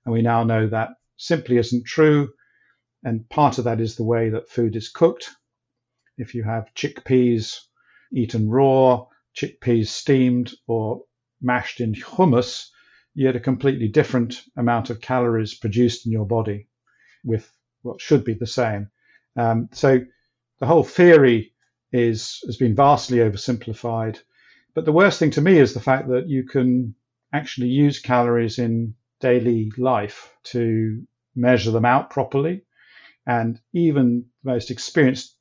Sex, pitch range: male, 115-130 Hz